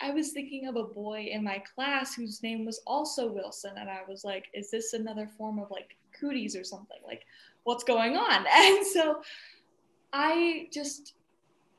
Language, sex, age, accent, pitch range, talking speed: English, female, 10-29, American, 205-245 Hz, 180 wpm